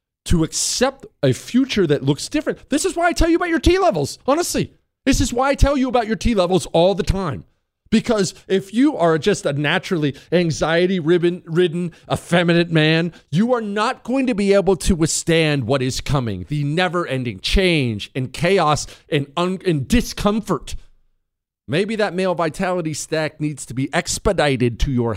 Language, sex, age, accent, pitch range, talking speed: English, male, 40-59, American, 135-205 Hz, 165 wpm